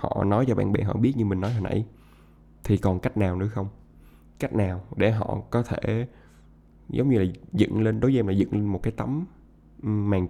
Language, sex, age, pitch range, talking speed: Vietnamese, male, 20-39, 95-120 Hz, 225 wpm